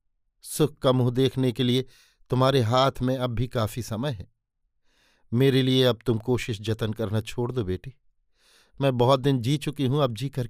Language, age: Hindi, 50-69